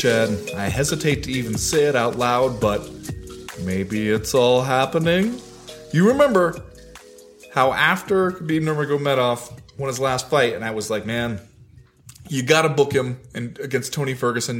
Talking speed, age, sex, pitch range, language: 150 wpm, 20-39, male, 125-180 Hz, English